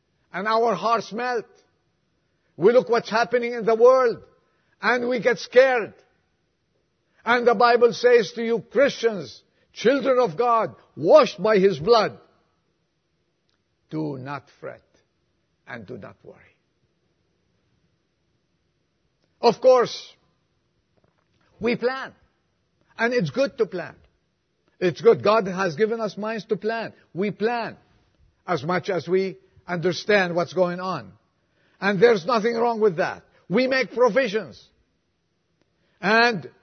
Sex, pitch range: male, 175-235 Hz